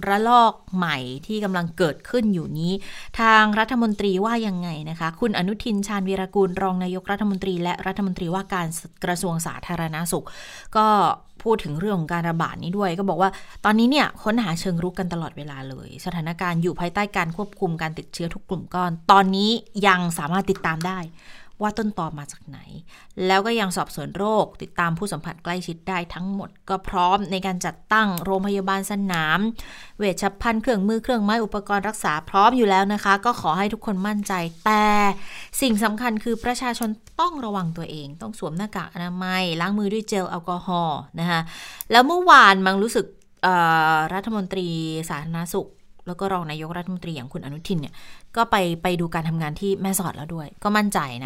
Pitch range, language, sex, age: 170-205 Hz, Thai, female, 20-39